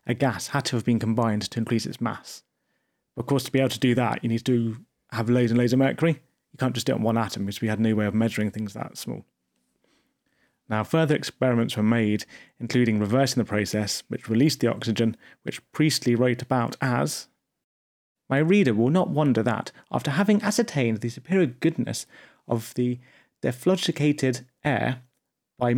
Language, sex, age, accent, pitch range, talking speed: English, male, 30-49, British, 115-165 Hz, 190 wpm